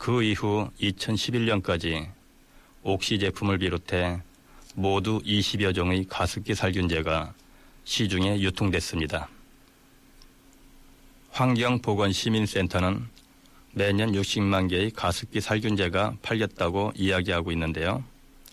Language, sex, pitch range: Korean, male, 90-110 Hz